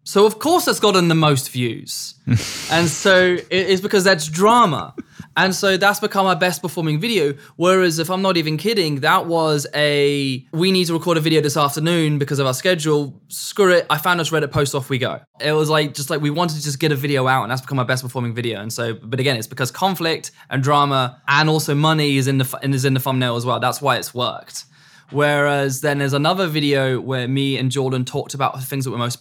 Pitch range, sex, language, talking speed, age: 130-160 Hz, male, English, 235 wpm, 20-39